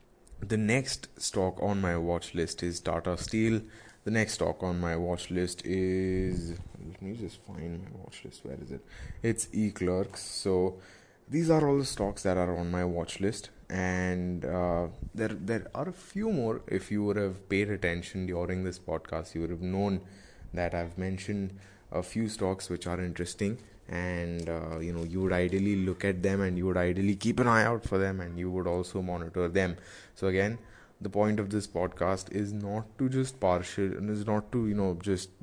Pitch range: 90-105 Hz